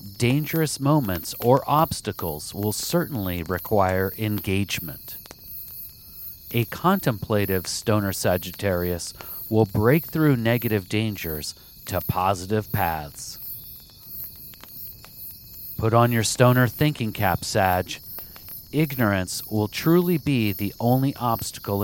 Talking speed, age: 95 wpm, 40-59